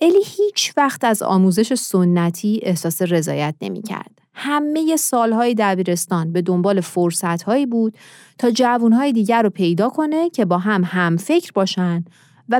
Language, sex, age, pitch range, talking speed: Persian, female, 30-49, 175-265 Hz, 145 wpm